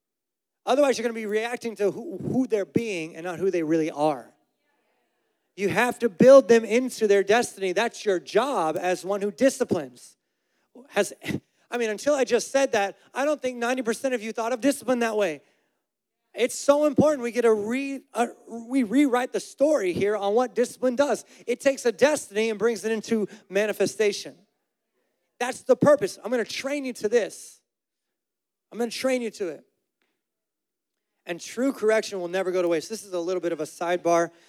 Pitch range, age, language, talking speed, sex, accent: 170-235 Hz, 30-49, English, 190 wpm, male, American